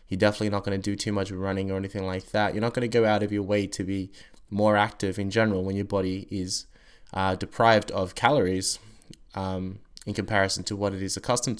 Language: English